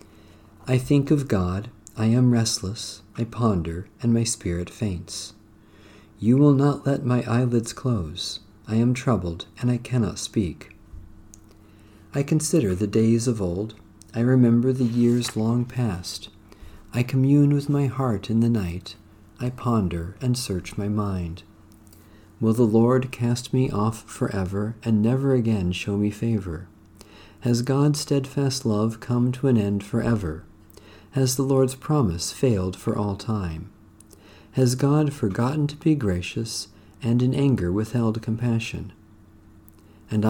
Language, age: English, 50-69